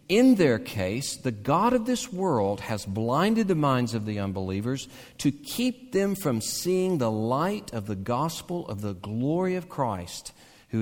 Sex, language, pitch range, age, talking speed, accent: male, English, 125-210 Hz, 50-69, 170 wpm, American